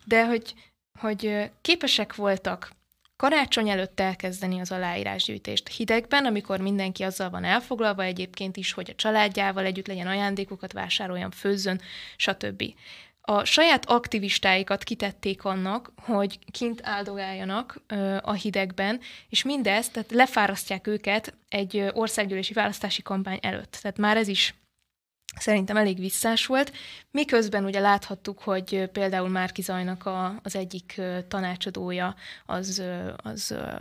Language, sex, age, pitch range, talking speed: Hungarian, female, 20-39, 190-215 Hz, 120 wpm